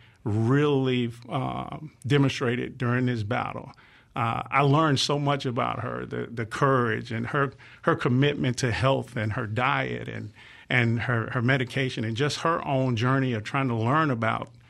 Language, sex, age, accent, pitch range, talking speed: English, male, 50-69, American, 120-140 Hz, 165 wpm